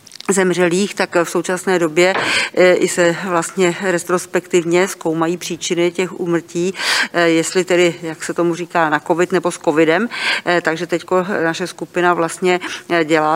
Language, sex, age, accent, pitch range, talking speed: Czech, female, 50-69, native, 165-180 Hz, 135 wpm